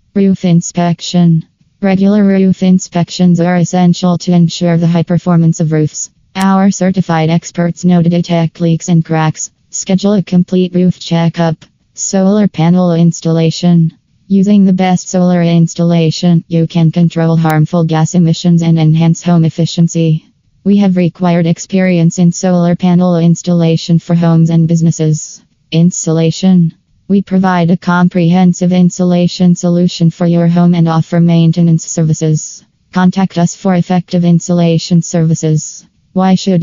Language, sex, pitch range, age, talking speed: English, female, 165-180 Hz, 20-39, 130 wpm